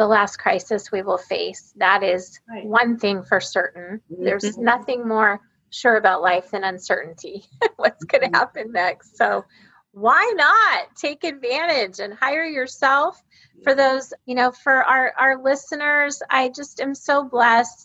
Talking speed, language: 155 wpm, English